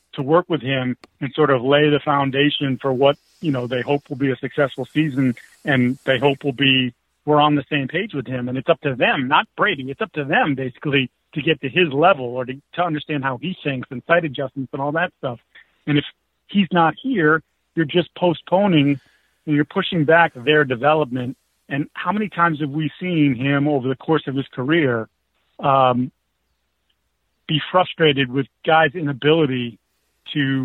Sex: male